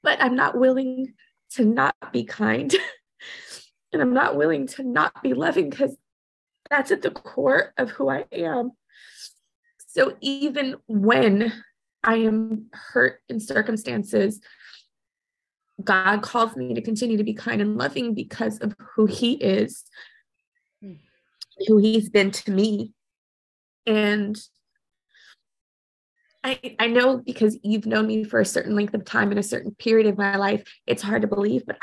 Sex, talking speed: female, 150 wpm